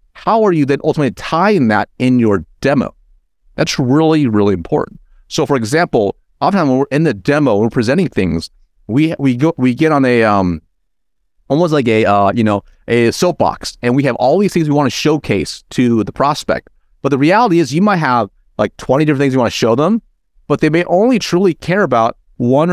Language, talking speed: English, 205 wpm